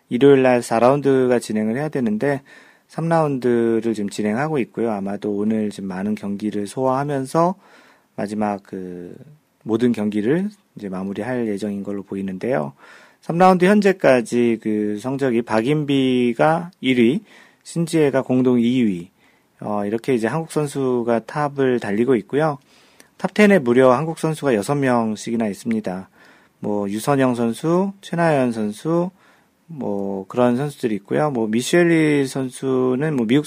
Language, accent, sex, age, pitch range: Korean, native, male, 40-59, 110-150 Hz